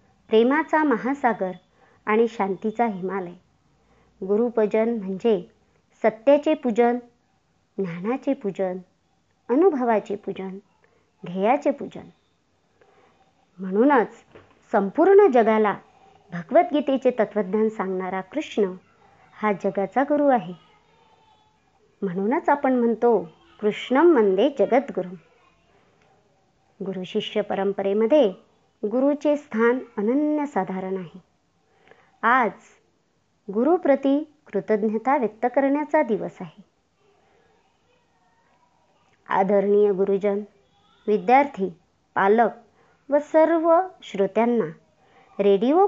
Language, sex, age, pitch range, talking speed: Marathi, male, 50-69, 195-265 Hz, 70 wpm